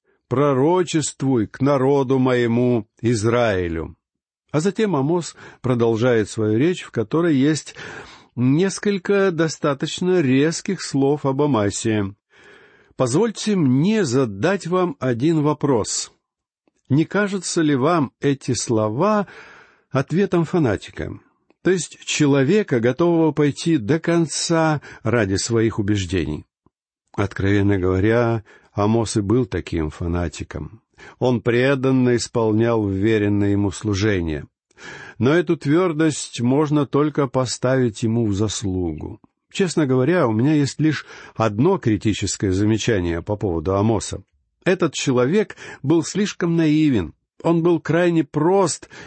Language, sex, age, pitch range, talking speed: Russian, male, 60-79, 110-165 Hz, 105 wpm